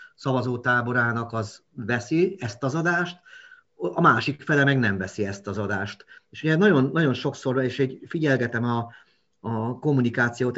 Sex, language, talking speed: male, Hungarian, 140 wpm